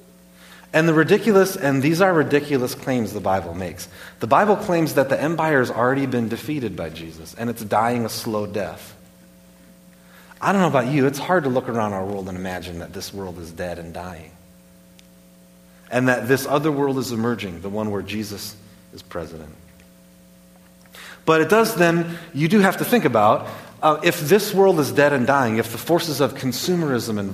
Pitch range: 90-140 Hz